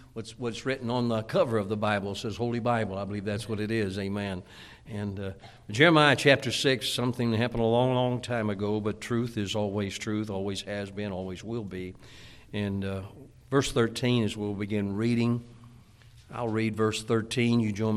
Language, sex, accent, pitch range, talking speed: English, male, American, 105-120 Hz, 195 wpm